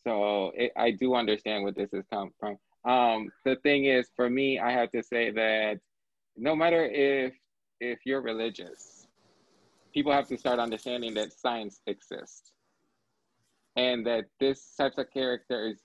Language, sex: English, male